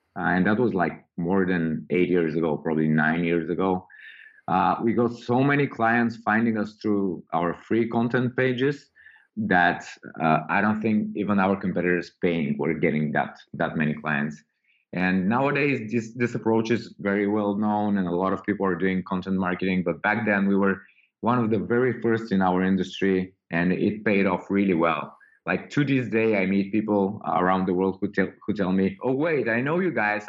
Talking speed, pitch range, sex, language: 200 wpm, 95-110 Hz, male, English